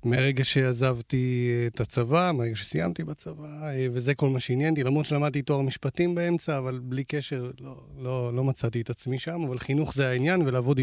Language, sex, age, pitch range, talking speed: Hebrew, male, 40-59, 120-145 Hz, 175 wpm